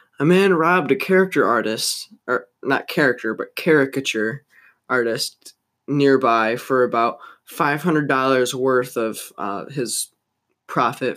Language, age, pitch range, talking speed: English, 20-39, 125-165 Hz, 125 wpm